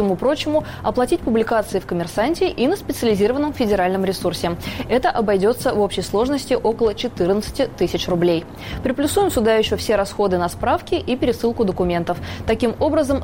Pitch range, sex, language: 190-265 Hz, female, Russian